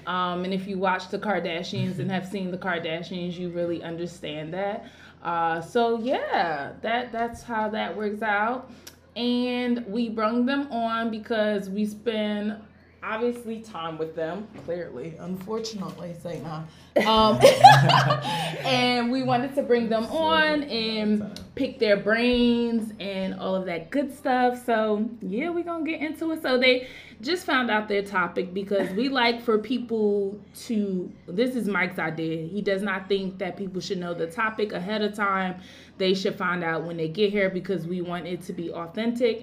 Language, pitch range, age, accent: English, 180-235 Hz, 20-39, American